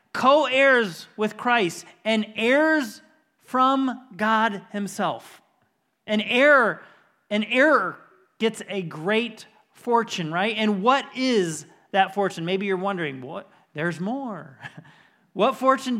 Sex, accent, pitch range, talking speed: male, American, 150-205 Hz, 115 wpm